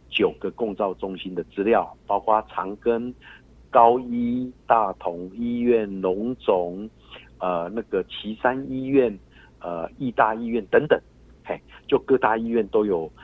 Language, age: Chinese, 50-69